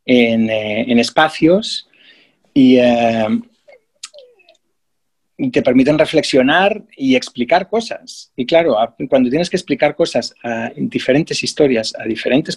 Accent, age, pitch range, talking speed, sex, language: Spanish, 40-59, 125-185 Hz, 120 wpm, male, Spanish